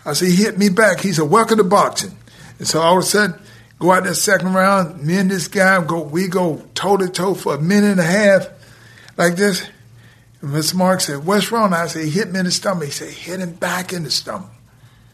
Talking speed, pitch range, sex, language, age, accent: 240 wpm, 140-205 Hz, male, English, 60-79, American